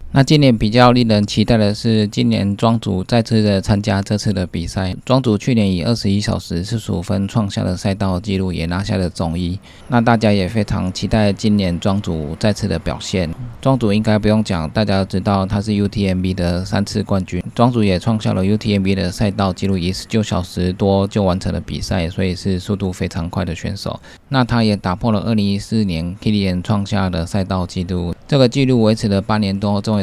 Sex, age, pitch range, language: male, 20-39, 90-105 Hz, Chinese